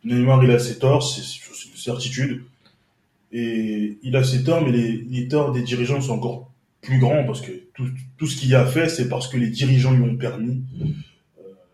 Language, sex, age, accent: French, male, 20-39, French